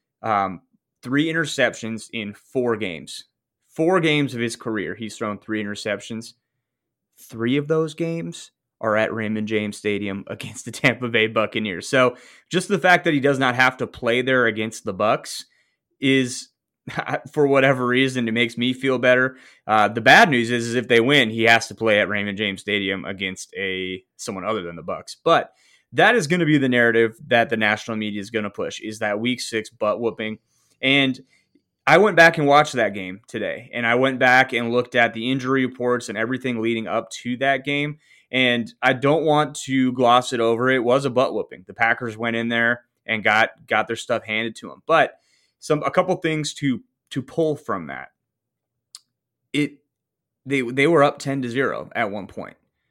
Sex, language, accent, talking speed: male, English, American, 195 wpm